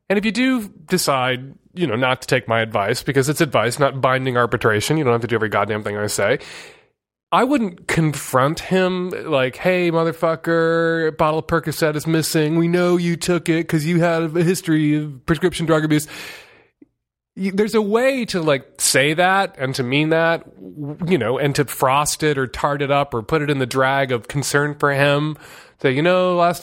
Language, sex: English, male